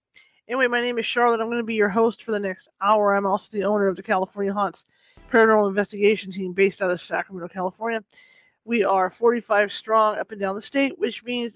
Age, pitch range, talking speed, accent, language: 40-59, 205-245 Hz, 220 wpm, American, English